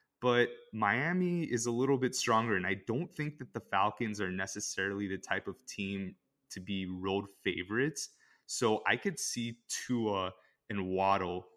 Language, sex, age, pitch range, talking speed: English, male, 20-39, 95-110 Hz, 160 wpm